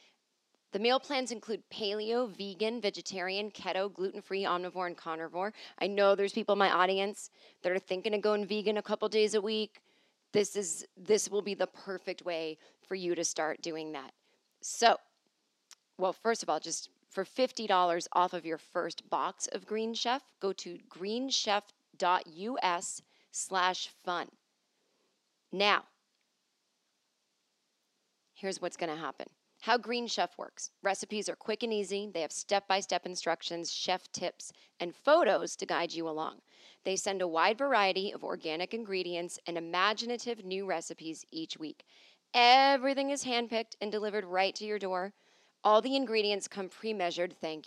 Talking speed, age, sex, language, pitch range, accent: 150 wpm, 30-49, female, English, 175-215 Hz, American